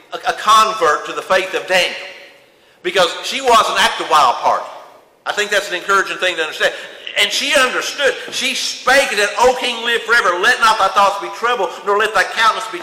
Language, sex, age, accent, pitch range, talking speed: English, male, 50-69, American, 205-295 Hz, 200 wpm